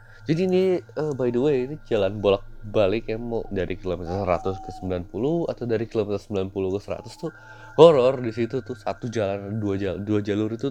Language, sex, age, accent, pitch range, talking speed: Indonesian, male, 20-39, native, 95-115 Hz, 190 wpm